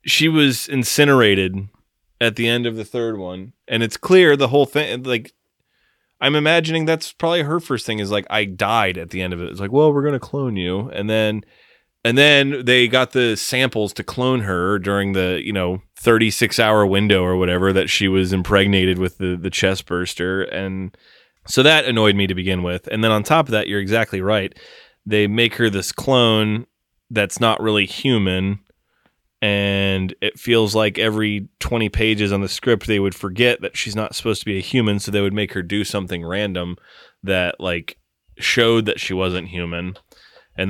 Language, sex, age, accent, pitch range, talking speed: English, male, 20-39, American, 95-115 Hz, 195 wpm